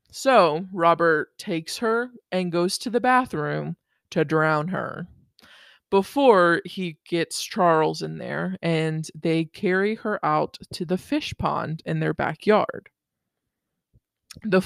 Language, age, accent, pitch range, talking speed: English, 20-39, American, 165-195 Hz, 125 wpm